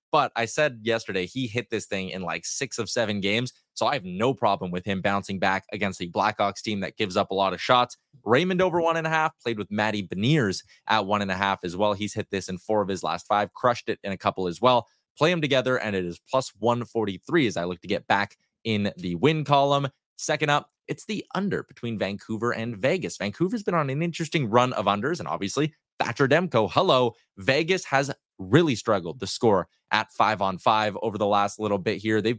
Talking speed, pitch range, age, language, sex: 230 wpm, 100-130 Hz, 20-39, English, male